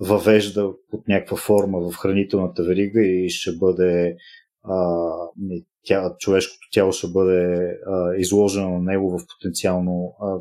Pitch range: 90-110 Hz